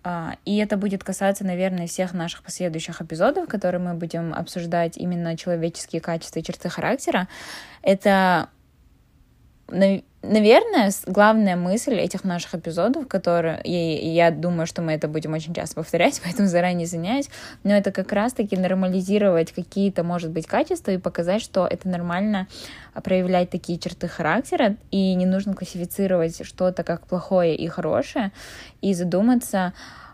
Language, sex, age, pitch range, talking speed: Russian, female, 10-29, 175-200 Hz, 135 wpm